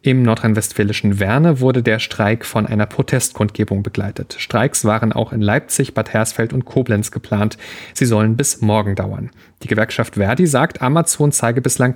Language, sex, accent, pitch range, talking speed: German, male, German, 110-130 Hz, 160 wpm